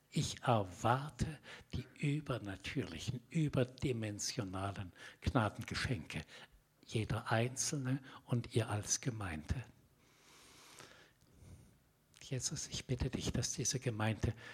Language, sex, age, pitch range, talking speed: German, male, 60-79, 110-130 Hz, 80 wpm